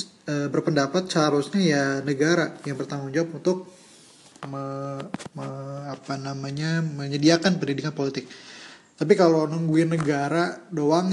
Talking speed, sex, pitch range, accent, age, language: 110 wpm, male, 140-170 Hz, Indonesian, 20-39, English